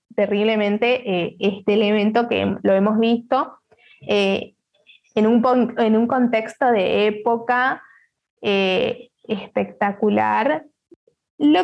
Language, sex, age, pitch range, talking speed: Spanish, female, 20-39, 210-255 Hz, 95 wpm